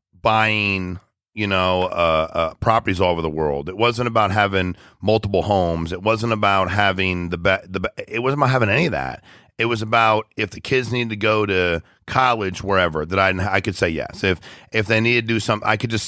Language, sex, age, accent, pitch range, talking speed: English, male, 40-59, American, 95-120 Hz, 220 wpm